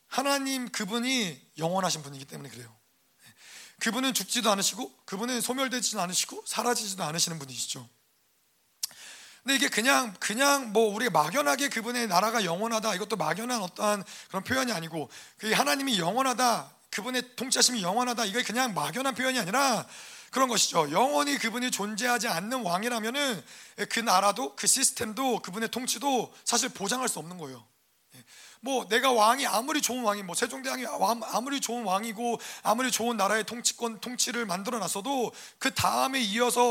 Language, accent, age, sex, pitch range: Korean, native, 30-49, male, 195-245 Hz